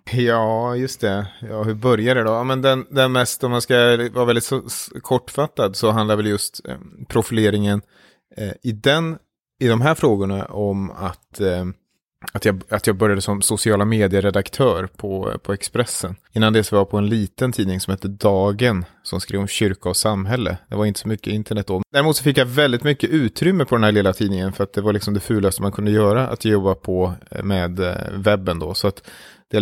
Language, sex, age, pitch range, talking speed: Swedish, male, 30-49, 100-120 Hz, 205 wpm